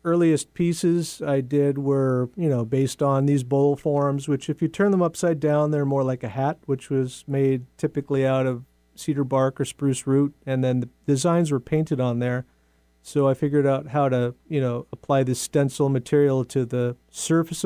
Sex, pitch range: male, 125-145 Hz